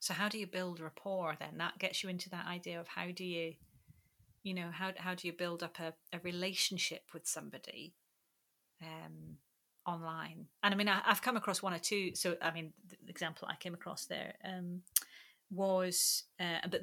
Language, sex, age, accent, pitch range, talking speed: English, female, 30-49, British, 170-195 Hz, 200 wpm